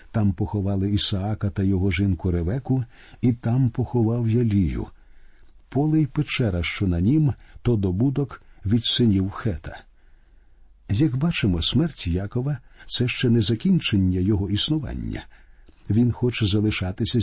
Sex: male